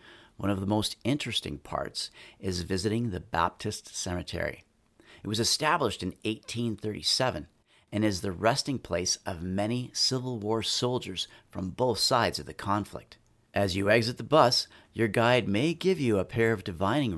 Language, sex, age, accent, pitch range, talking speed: English, male, 50-69, American, 95-120 Hz, 160 wpm